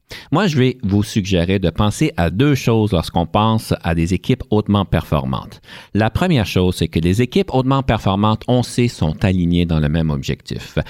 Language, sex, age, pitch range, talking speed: French, male, 50-69, 90-125 Hz, 185 wpm